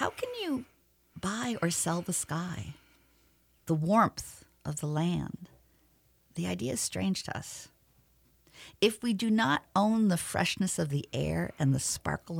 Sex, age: female, 50-69